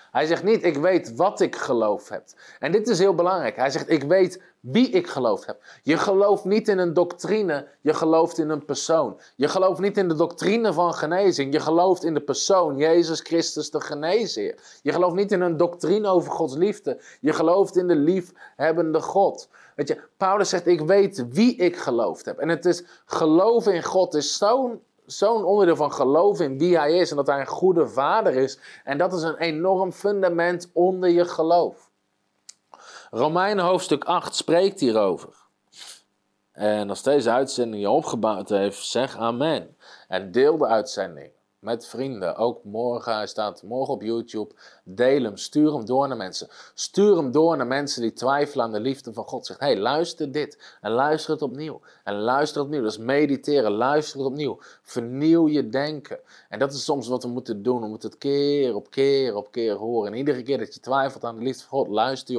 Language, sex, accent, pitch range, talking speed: Dutch, male, Dutch, 130-180 Hz, 195 wpm